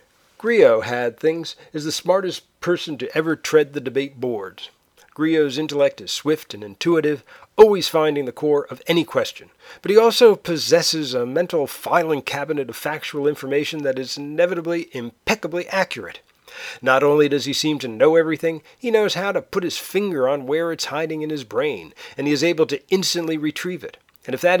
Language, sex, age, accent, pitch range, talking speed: English, male, 50-69, American, 140-170 Hz, 185 wpm